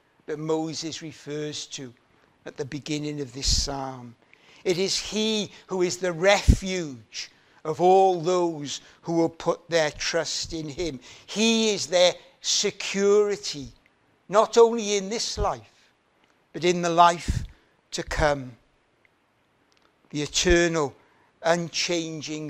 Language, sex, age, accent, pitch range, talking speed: English, male, 60-79, British, 150-190 Hz, 120 wpm